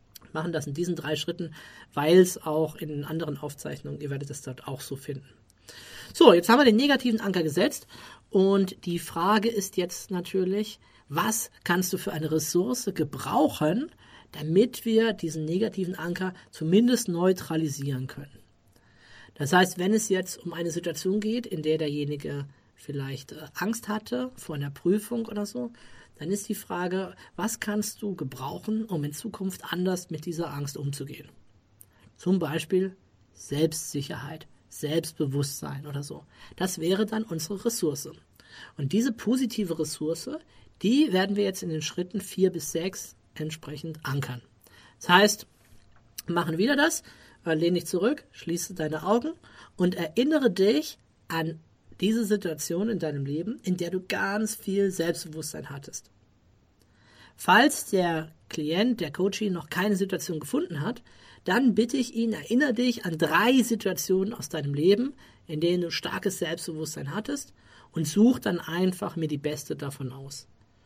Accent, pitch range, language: German, 150-200 Hz, German